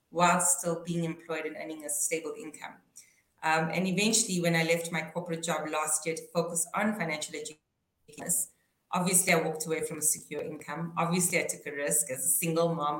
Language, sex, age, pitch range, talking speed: English, female, 30-49, 155-180 Hz, 195 wpm